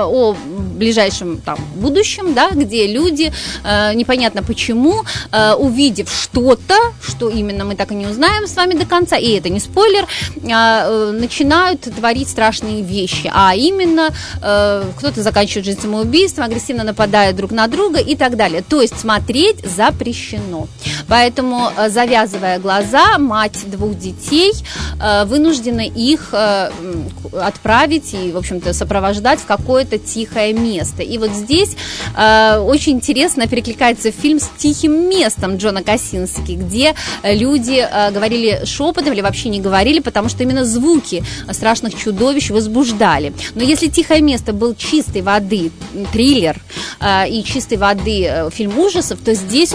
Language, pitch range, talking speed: Russian, 205-280 Hz, 135 wpm